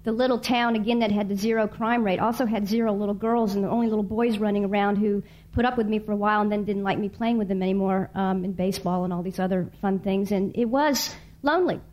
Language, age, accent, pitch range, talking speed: English, 50-69, American, 200-230 Hz, 265 wpm